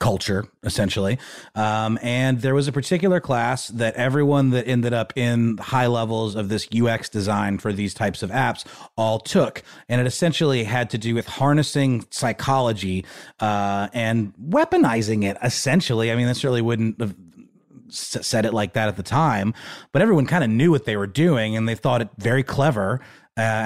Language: English